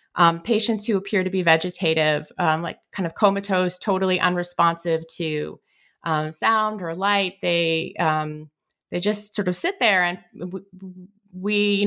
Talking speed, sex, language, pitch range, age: 155 wpm, female, English, 175-205 Hz, 30-49